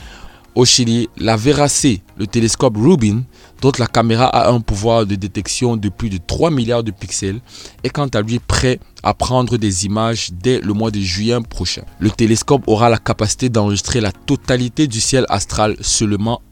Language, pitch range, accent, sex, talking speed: French, 95-125 Hz, French, male, 180 wpm